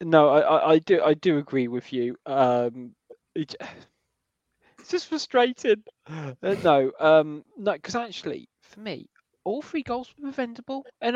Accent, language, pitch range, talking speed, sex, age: British, English, 135-170 Hz, 150 wpm, male, 20-39